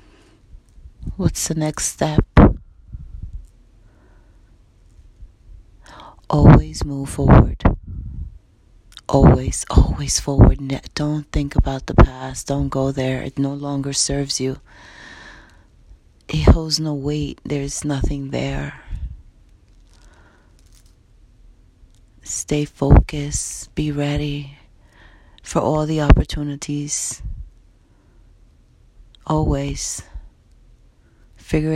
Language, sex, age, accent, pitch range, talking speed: English, female, 30-49, American, 90-145 Hz, 75 wpm